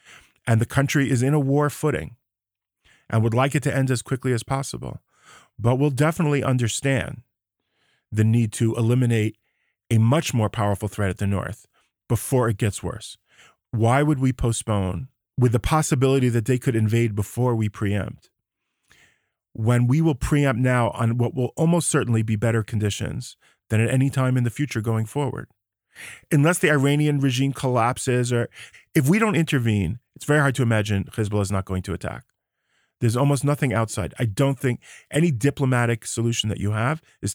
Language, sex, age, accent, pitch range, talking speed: English, male, 40-59, American, 110-135 Hz, 175 wpm